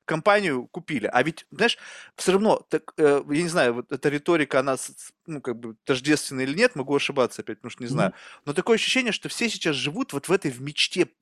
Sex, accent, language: male, native, Russian